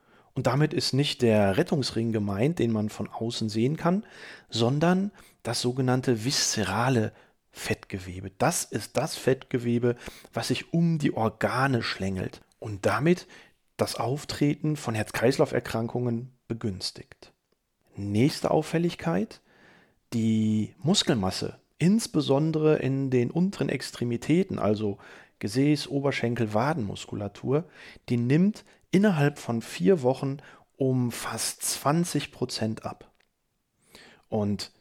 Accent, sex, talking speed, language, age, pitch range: German, male, 105 wpm, German, 40-59, 110-145 Hz